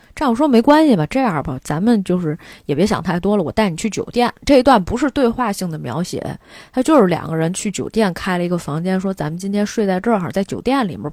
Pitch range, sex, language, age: 185-265 Hz, female, Chinese, 20-39